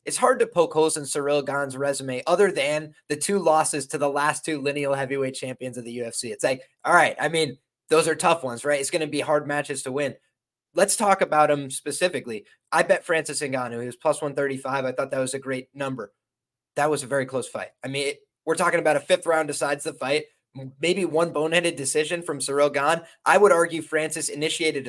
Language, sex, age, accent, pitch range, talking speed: English, male, 20-39, American, 145-185 Hz, 225 wpm